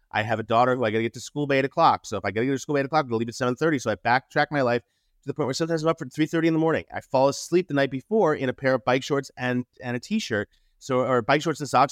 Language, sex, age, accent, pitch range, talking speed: English, male, 30-49, American, 125-180 Hz, 345 wpm